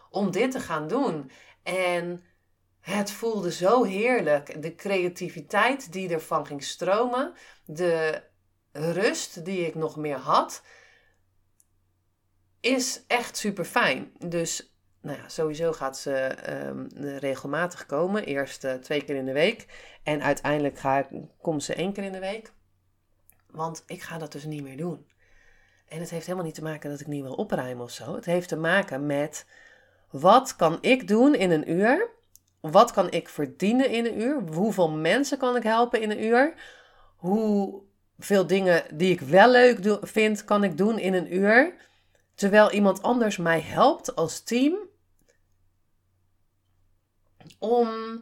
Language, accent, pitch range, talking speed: Dutch, Dutch, 135-210 Hz, 150 wpm